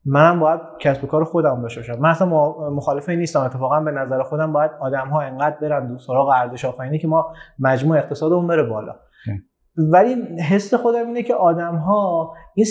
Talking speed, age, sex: 185 wpm, 30-49, male